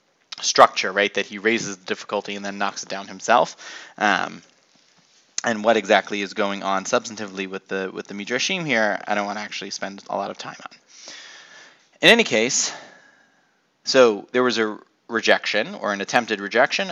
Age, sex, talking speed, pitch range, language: 20-39, male, 175 wpm, 100-140 Hz, English